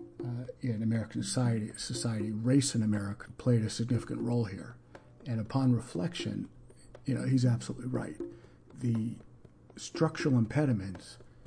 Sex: male